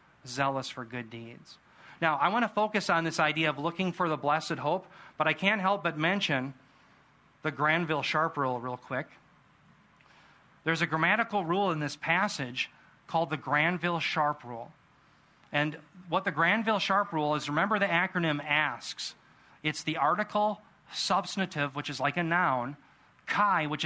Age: 40-59